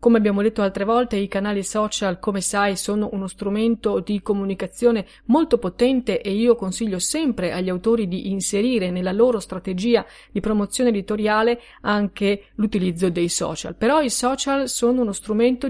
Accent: native